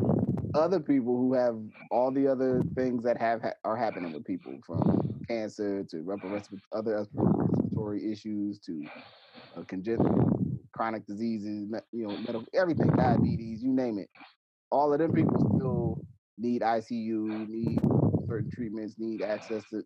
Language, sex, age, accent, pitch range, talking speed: English, male, 30-49, American, 105-115 Hz, 135 wpm